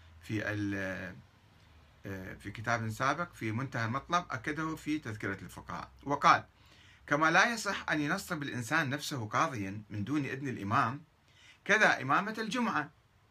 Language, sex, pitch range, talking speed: Arabic, male, 105-150 Hz, 120 wpm